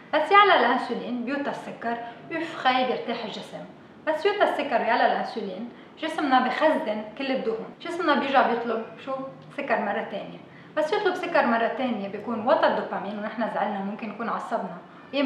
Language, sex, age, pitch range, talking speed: Arabic, female, 20-39, 225-285 Hz, 155 wpm